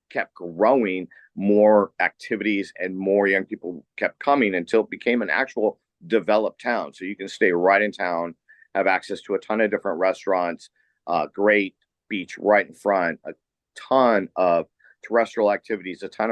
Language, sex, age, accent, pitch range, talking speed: English, male, 50-69, American, 95-115 Hz, 165 wpm